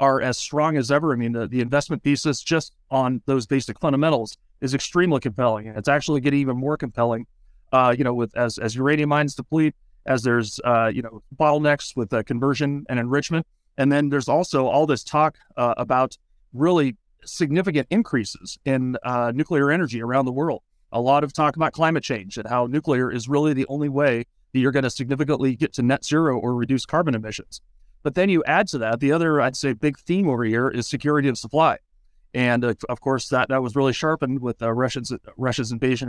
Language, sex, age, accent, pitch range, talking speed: English, male, 30-49, American, 120-145 Hz, 205 wpm